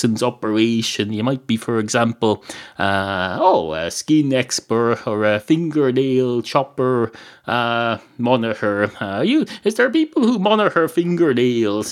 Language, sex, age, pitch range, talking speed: English, male, 30-49, 110-150 Hz, 125 wpm